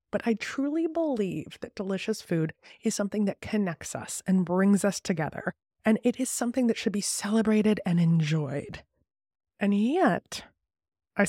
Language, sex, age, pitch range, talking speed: English, female, 20-39, 160-210 Hz, 155 wpm